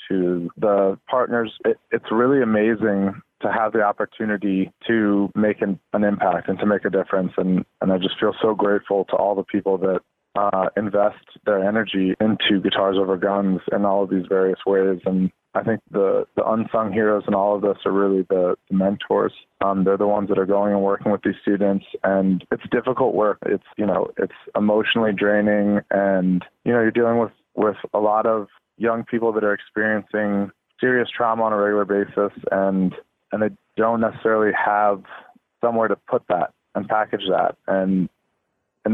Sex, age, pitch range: male, 20-39, 95-110 Hz